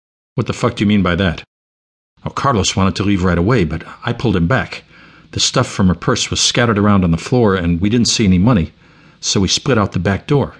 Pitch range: 85-110 Hz